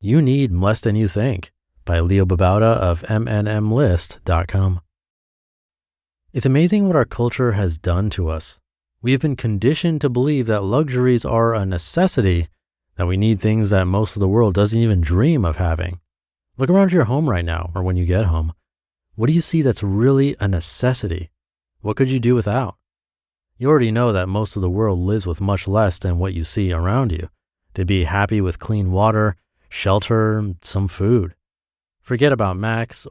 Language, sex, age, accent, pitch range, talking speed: English, male, 30-49, American, 90-125 Hz, 180 wpm